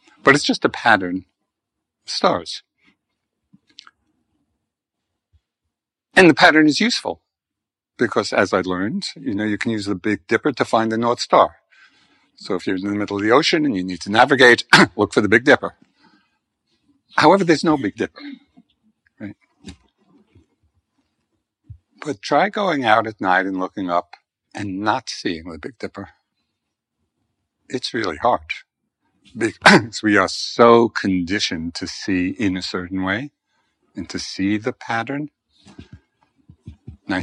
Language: English